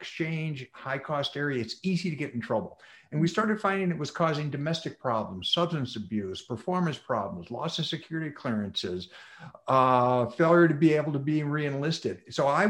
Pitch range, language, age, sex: 125-175 Hz, English, 50-69, male